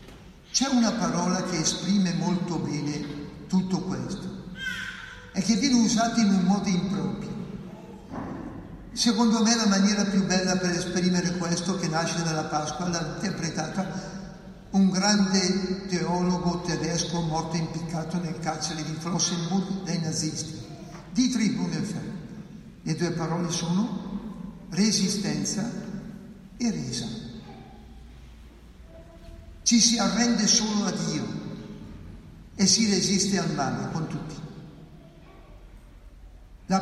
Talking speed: 110 wpm